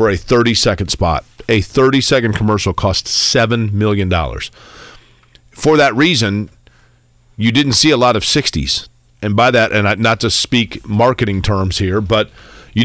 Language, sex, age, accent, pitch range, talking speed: English, male, 40-59, American, 100-120 Hz, 155 wpm